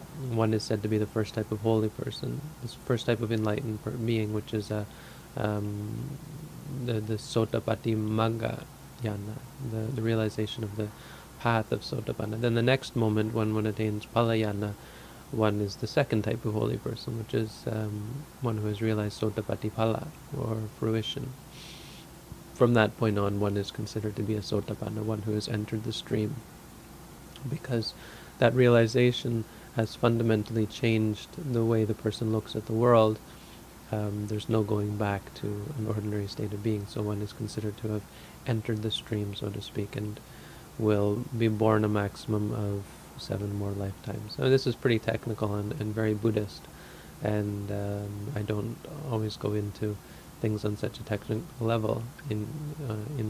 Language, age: English, 20-39